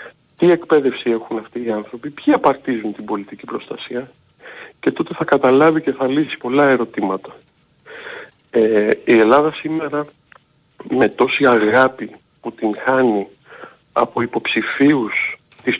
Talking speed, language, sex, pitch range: 125 wpm, Greek, male, 115-145 Hz